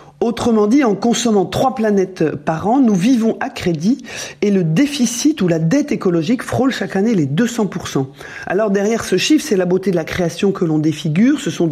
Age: 40-59